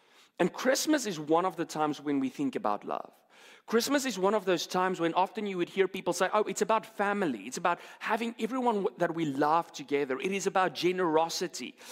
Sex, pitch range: male, 165-230 Hz